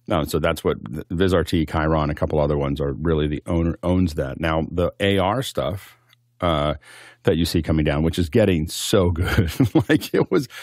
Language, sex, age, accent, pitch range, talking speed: English, male, 40-59, American, 80-95 Hz, 185 wpm